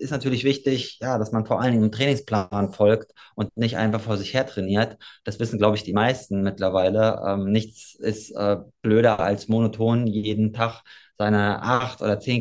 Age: 20-39